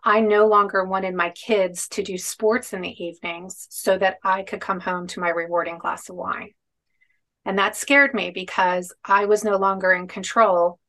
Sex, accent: female, American